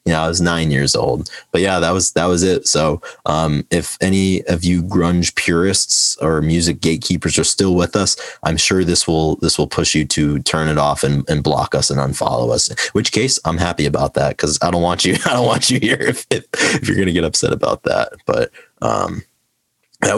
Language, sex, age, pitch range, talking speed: English, male, 30-49, 75-90 Hz, 230 wpm